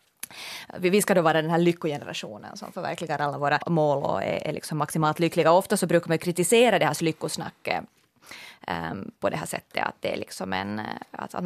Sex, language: female, Finnish